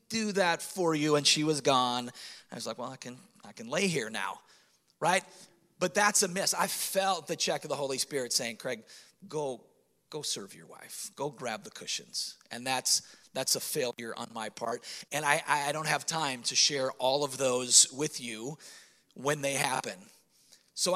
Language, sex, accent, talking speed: English, male, American, 195 wpm